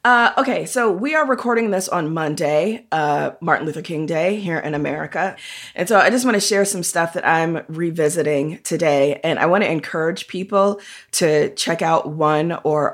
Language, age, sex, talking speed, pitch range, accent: English, 20-39, female, 190 wpm, 150-185 Hz, American